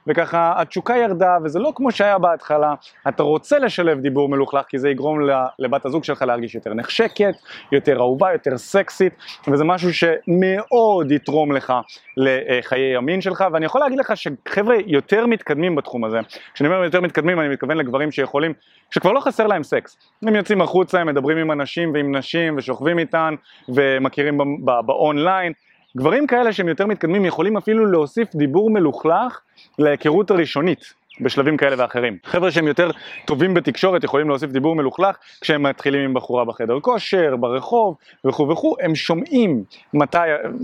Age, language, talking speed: 30-49, Hebrew, 155 wpm